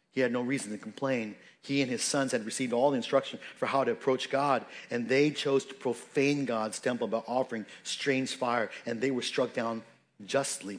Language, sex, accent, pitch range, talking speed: English, male, American, 125-140 Hz, 205 wpm